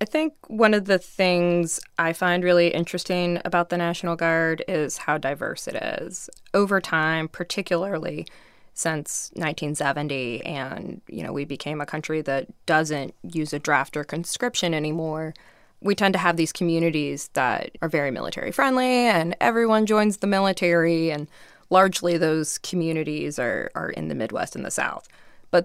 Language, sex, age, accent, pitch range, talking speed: English, female, 20-39, American, 155-185 Hz, 155 wpm